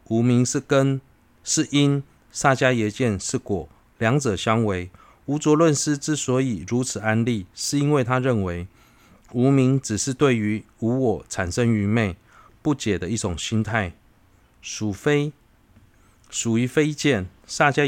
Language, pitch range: Chinese, 100-130 Hz